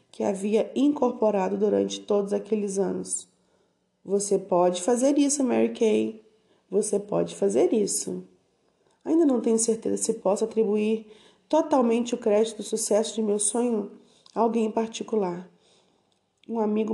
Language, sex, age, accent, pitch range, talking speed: Portuguese, female, 20-39, Brazilian, 195-230 Hz, 135 wpm